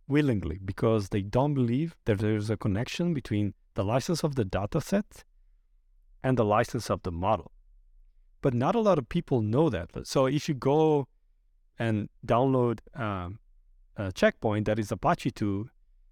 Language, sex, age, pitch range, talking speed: English, male, 40-59, 90-130 Hz, 160 wpm